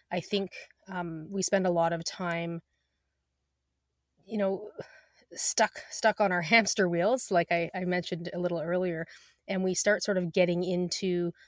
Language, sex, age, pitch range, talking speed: English, female, 20-39, 170-195 Hz, 160 wpm